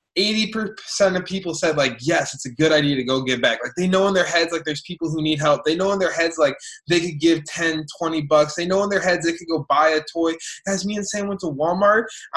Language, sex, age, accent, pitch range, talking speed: English, male, 20-39, American, 160-205 Hz, 270 wpm